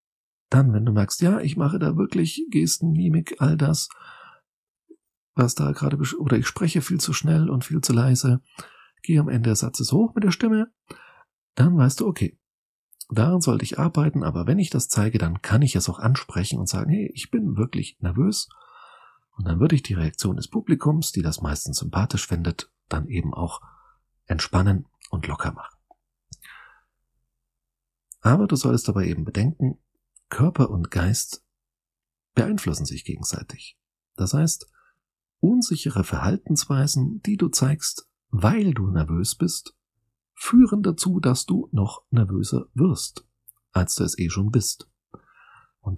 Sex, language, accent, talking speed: male, German, German, 155 wpm